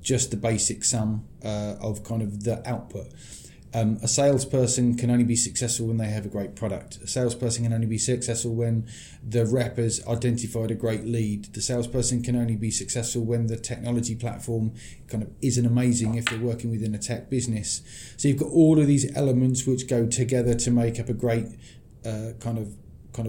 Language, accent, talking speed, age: English, British, 200 wpm, 30-49